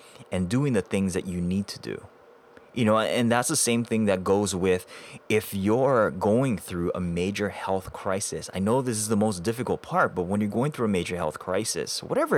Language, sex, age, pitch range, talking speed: English, male, 20-39, 90-120 Hz, 220 wpm